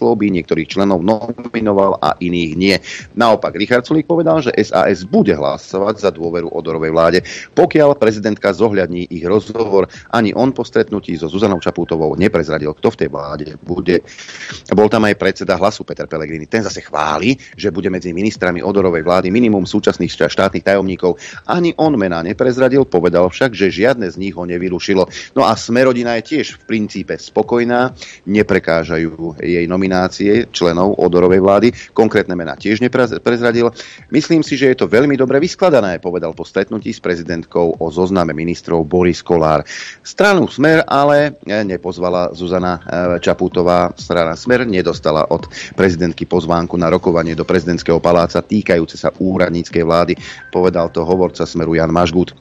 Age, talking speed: 40-59, 150 wpm